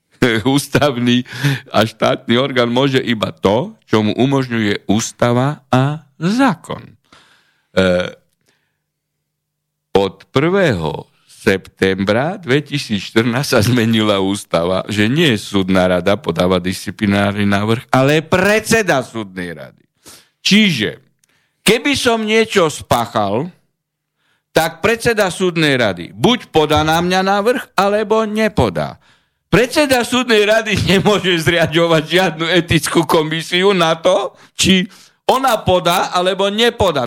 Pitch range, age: 120-180 Hz, 60-79